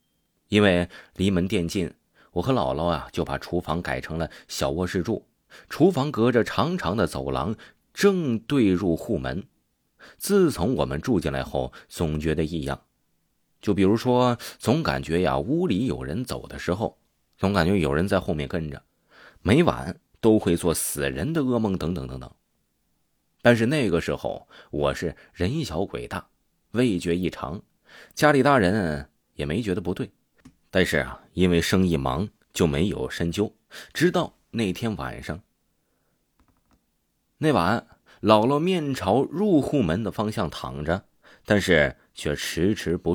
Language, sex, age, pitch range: Chinese, male, 30-49, 80-105 Hz